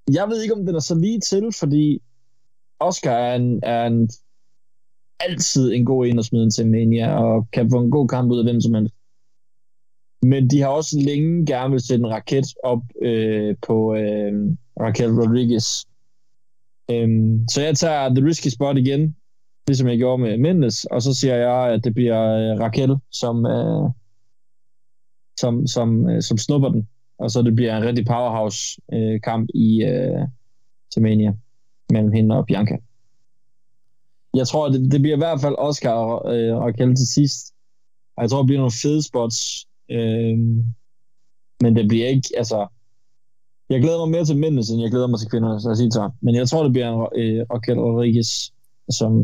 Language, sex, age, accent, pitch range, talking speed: Danish, male, 20-39, native, 115-140 Hz, 180 wpm